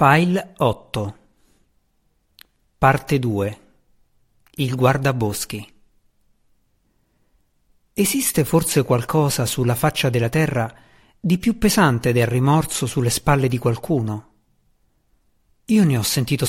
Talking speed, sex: 95 wpm, male